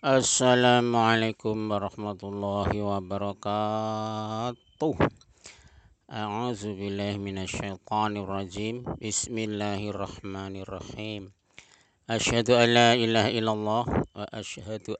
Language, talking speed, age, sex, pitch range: Indonesian, 60 wpm, 50-69, male, 100-115 Hz